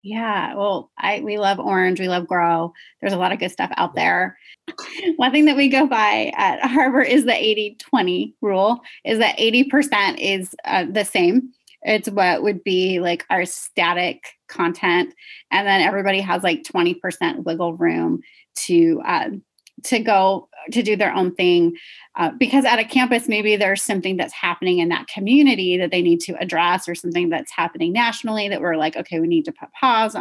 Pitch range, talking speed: 180-250 Hz, 185 wpm